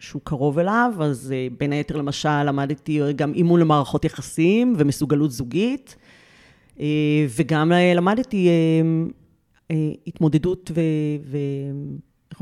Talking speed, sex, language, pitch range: 90 wpm, female, Hebrew, 150-190 Hz